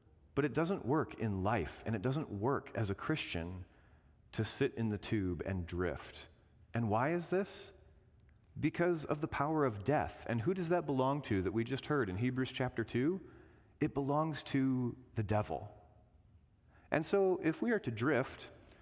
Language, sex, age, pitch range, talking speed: English, male, 30-49, 100-150 Hz, 180 wpm